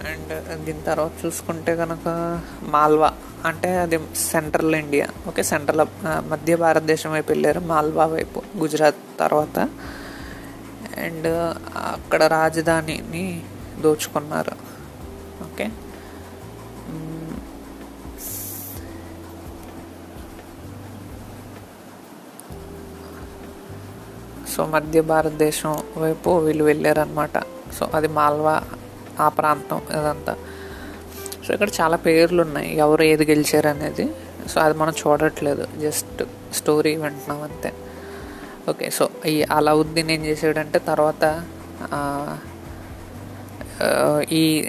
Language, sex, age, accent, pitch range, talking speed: Telugu, female, 20-39, native, 115-165 Hz, 85 wpm